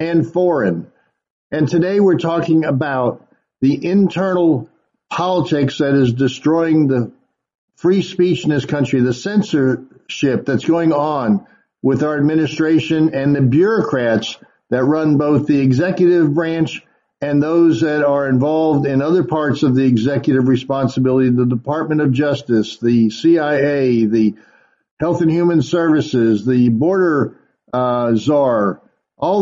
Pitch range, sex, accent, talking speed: 135-170 Hz, male, American, 130 wpm